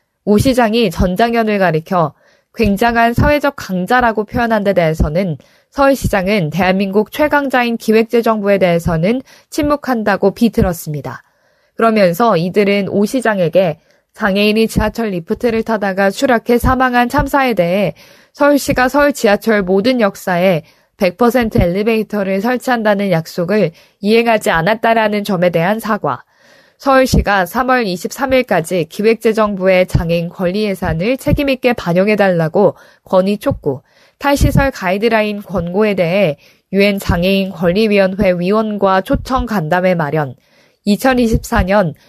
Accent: native